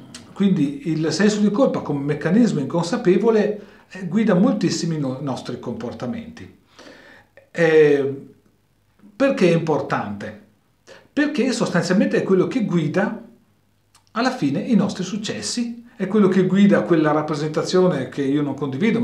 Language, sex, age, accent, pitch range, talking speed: Italian, male, 40-59, native, 140-215 Hz, 115 wpm